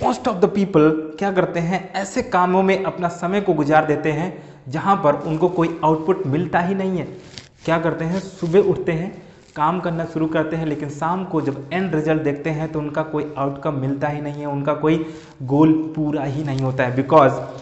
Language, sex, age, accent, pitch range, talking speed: Hindi, male, 30-49, native, 150-185 Hz, 210 wpm